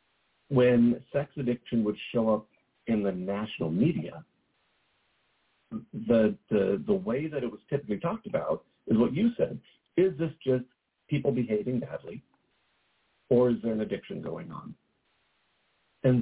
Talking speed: 140 wpm